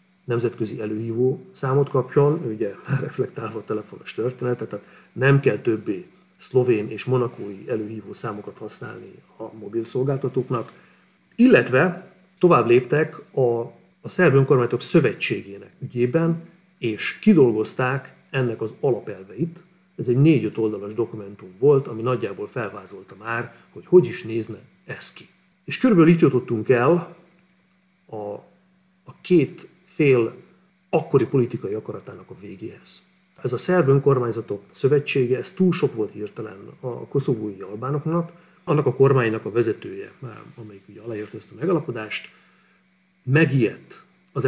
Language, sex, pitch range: Hungarian, male, 115-180 Hz